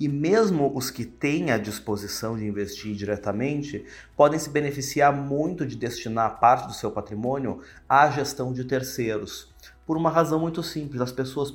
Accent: Brazilian